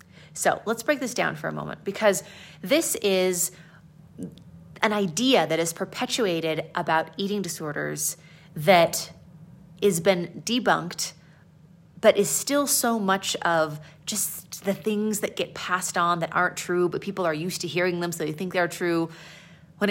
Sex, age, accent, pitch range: female, 30-49, American, 165-205 Hz